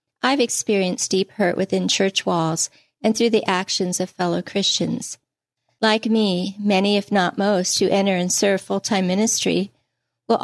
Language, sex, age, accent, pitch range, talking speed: English, female, 40-59, American, 180-220 Hz, 155 wpm